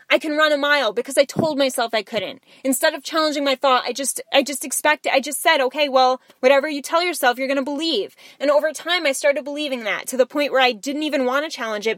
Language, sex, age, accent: English, female, 10-29, American